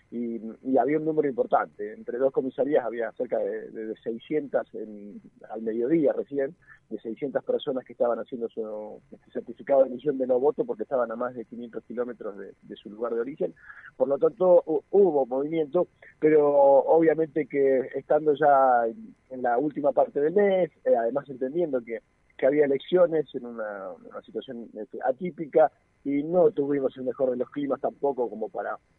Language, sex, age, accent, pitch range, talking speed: Spanish, male, 40-59, Argentinian, 130-170 Hz, 170 wpm